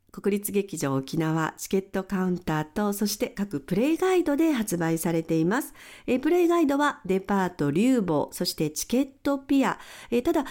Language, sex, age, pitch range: Japanese, female, 50-69, 180-280 Hz